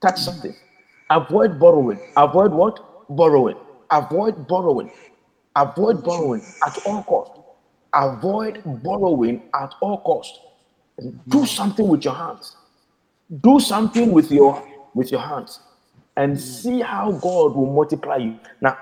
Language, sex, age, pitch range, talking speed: English, male, 50-69, 170-250 Hz, 125 wpm